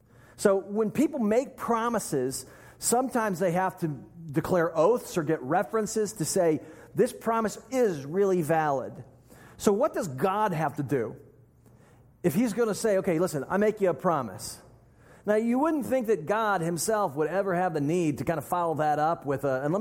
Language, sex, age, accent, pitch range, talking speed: English, male, 40-59, American, 155-215 Hz, 190 wpm